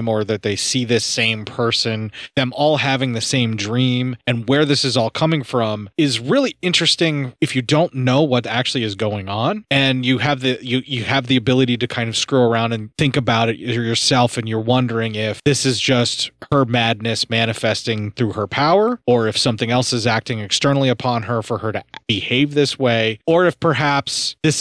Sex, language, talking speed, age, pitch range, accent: male, English, 200 wpm, 30-49, 110-135 Hz, American